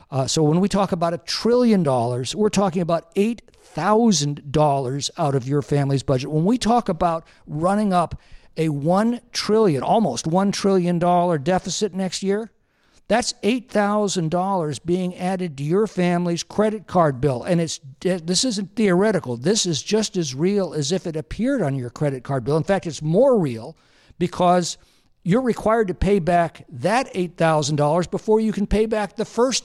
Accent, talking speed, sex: American, 165 wpm, male